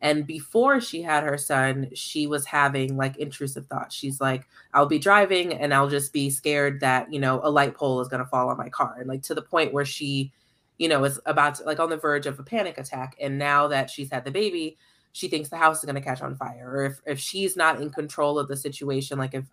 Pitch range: 135-155 Hz